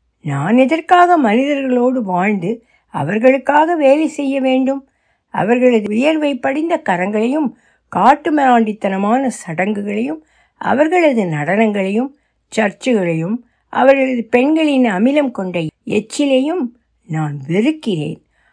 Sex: female